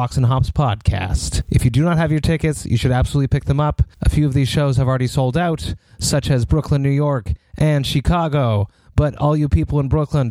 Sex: male